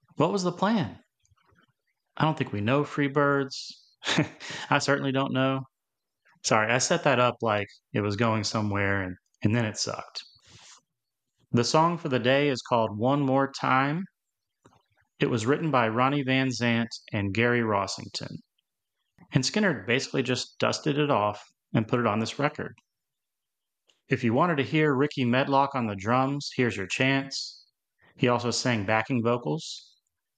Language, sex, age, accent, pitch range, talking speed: English, male, 30-49, American, 115-135 Hz, 160 wpm